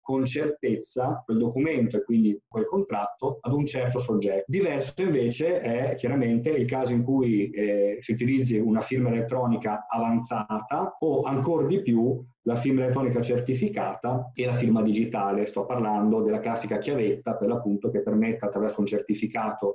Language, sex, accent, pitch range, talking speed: Italian, male, native, 110-125 Hz, 155 wpm